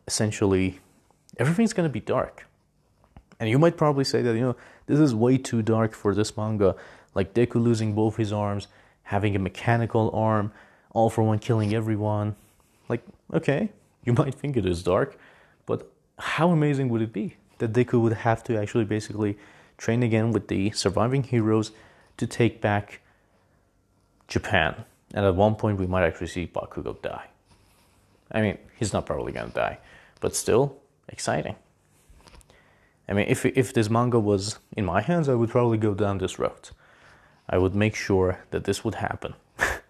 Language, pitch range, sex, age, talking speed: English, 100-120 Hz, male, 30-49, 170 wpm